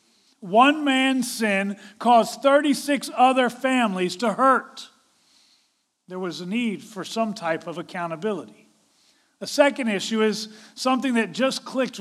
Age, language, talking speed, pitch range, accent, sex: 40-59, English, 130 wpm, 200-260 Hz, American, male